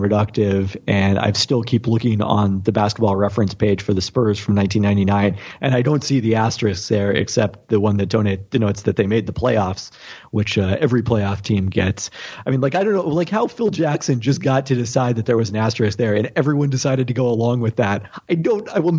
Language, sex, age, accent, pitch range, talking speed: English, male, 40-59, American, 105-140 Hz, 230 wpm